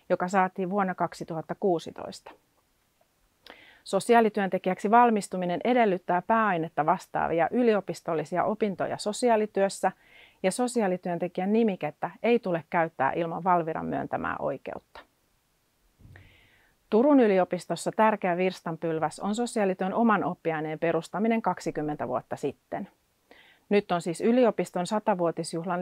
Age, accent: 40-59, native